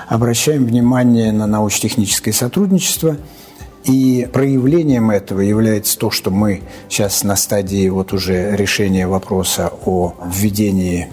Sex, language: male, Russian